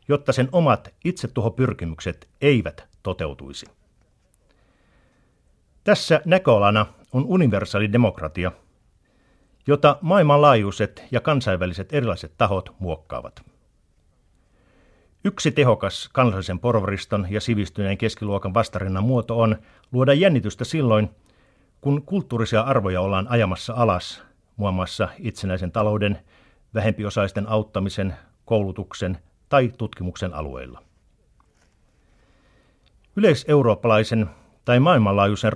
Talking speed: 85 wpm